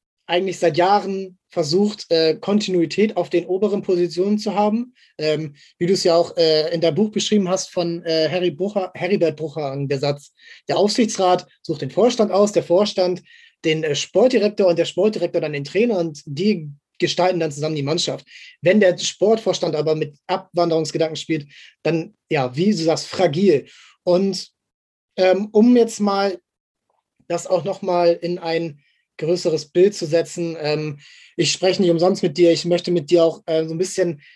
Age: 20-39